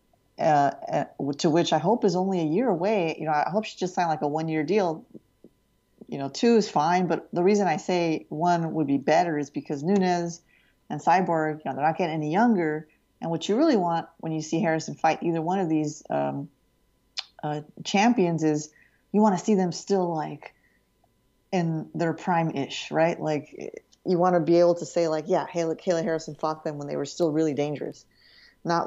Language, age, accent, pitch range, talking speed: English, 30-49, American, 150-175 Hz, 205 wpm